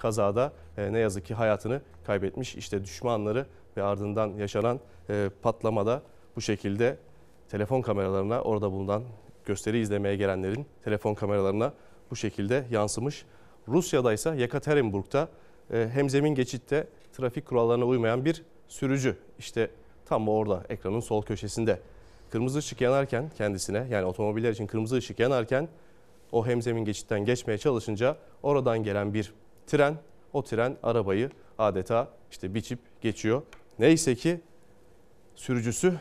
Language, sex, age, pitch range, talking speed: Turkish, male, 30-49, 105-135 Hz, 125 wpm